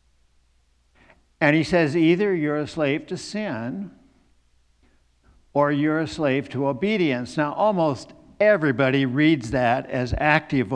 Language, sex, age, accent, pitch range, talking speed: English, male, 60-79, American, 95-160 Hz, 125 wpm